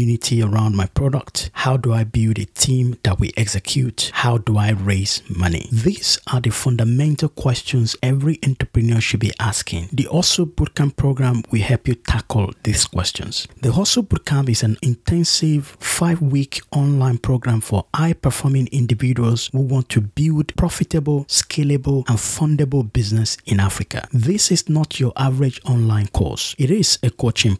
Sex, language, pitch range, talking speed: male, English, 110-145 Hz, 155 wpm